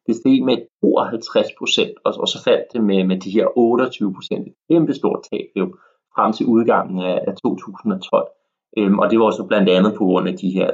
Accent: native